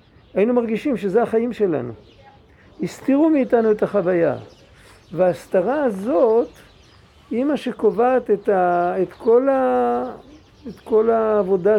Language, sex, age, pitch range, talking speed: Hebrew, male, 50-69, 160-230 Hz, 110 wpm